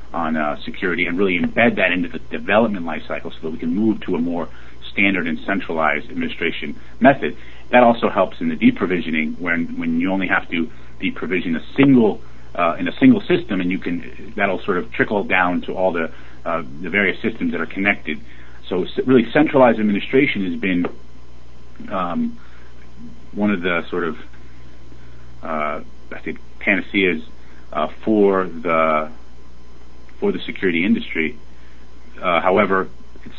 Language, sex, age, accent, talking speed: English, male, 40-59, American, 160 wpm